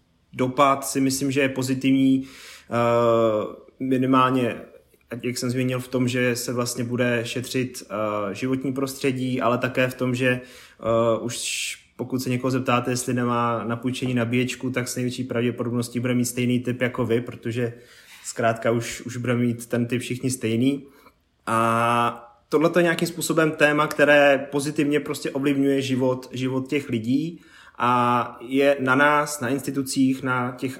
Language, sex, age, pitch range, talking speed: Czech, male, 20-39, 120-135 Hz, 145 wpm